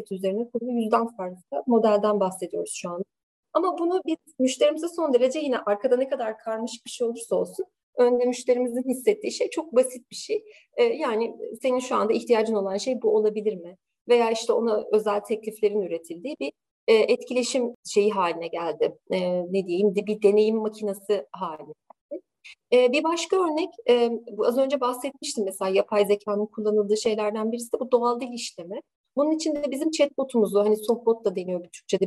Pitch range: 205-265 Hz